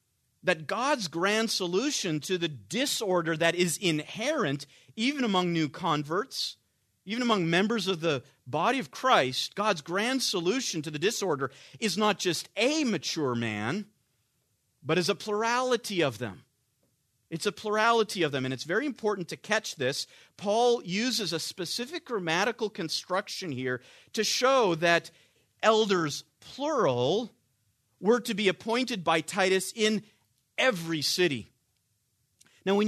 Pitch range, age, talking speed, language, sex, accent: 140-210 Hz, 40-59, 135 wpm, English, male, American